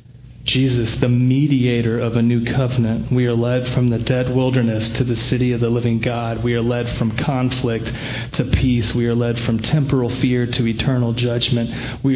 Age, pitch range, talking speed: 30-49, 115-130 Hz, 190 wpm